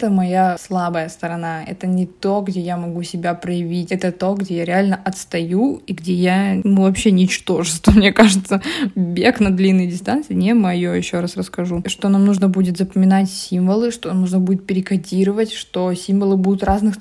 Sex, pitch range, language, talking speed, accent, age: female, 180-205 Hz, Russian, 175 wpm, native, 20-39